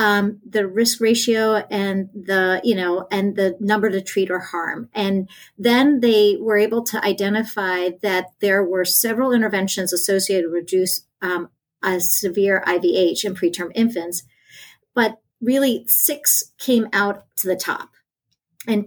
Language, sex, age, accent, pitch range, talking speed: English, female, 40-59, American, 185-225 Hz, 145 wpm